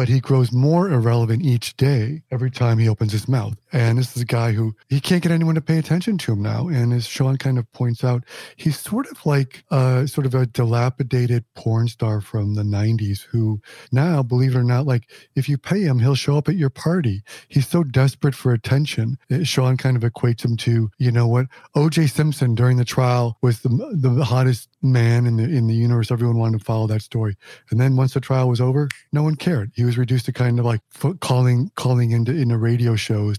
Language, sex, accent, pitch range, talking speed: English, male, American, 115-140 Hz, 225 wpm